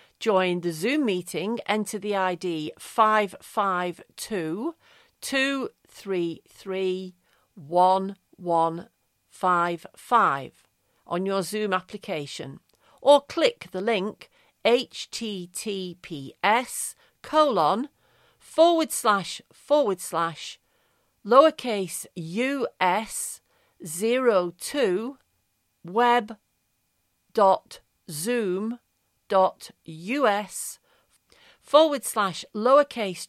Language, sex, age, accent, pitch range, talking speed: English, female, 50-69, British, 180-245 Hz, 80 wpm